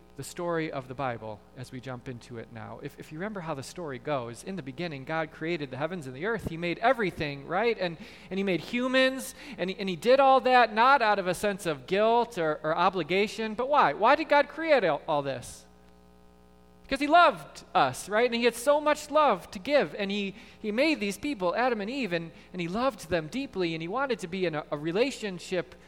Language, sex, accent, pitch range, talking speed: English, male, American, 135-215 Hz, 235 wpm